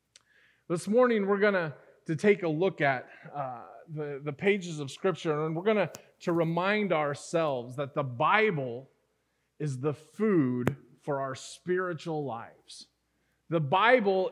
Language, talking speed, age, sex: English, 140 wpm, 30-49, male